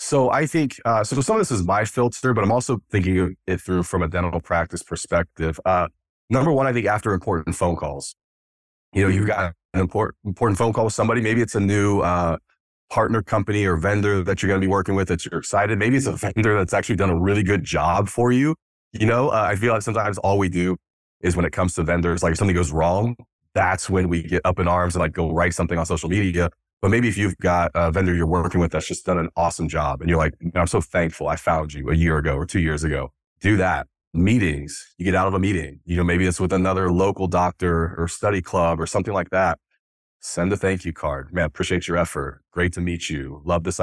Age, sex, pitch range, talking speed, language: 30-49, male, 85-100 Hz, 250 wpm, English